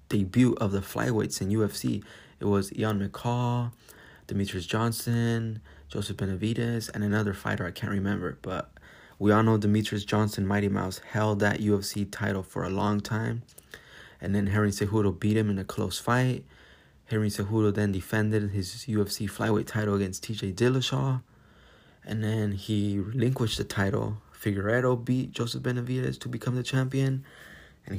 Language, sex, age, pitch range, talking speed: English, male, 20-39, 100-115 Hz, 155 wpm